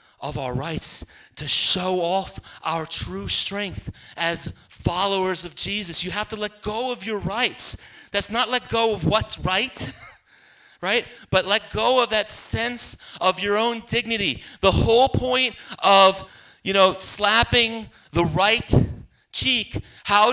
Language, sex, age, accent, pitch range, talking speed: English, male, 30-49, American, 170-225 Hz, 150 wpm